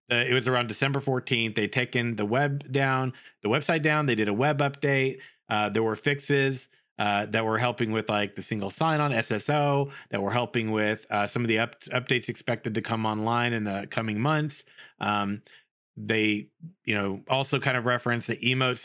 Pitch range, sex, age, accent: 110-145 Hz, male, 30-49, American